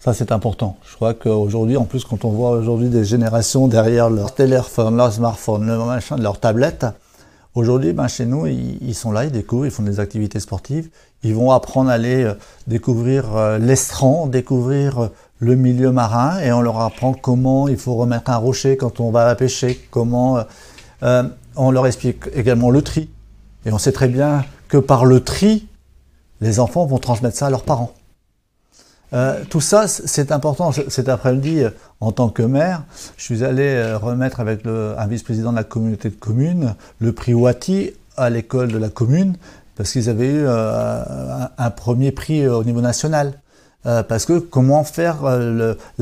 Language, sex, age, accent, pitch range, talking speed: French, male, 50-69, French, 115-135 Hz, 175 wpm